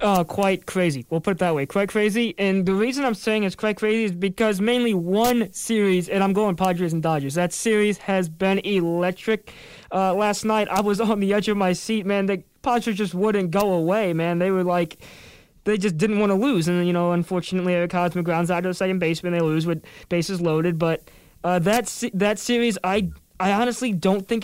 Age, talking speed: 20-39, 220 wpm